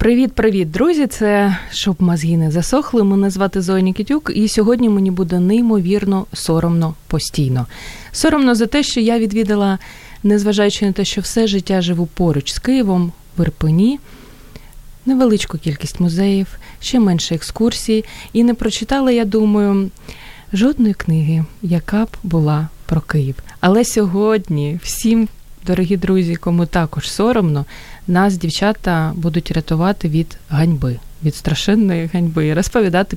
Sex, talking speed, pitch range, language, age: female, 130 wpm, 165-215 Hz, Ukrainian, 20-39